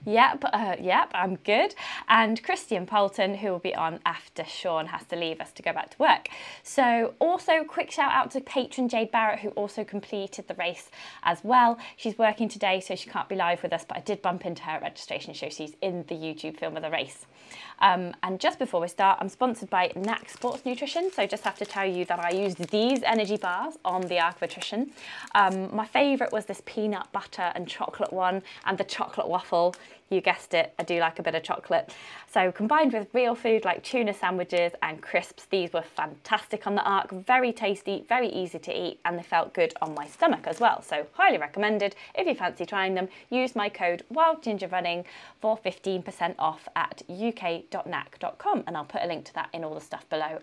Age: 20-39